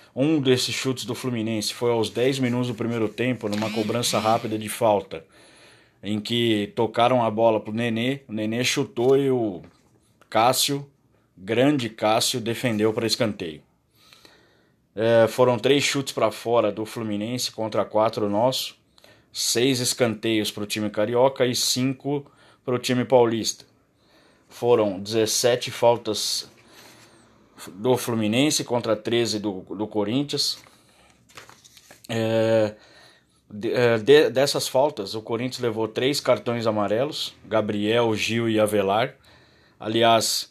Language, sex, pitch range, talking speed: Portuguese, male, 105-125 Hz, 120 wpm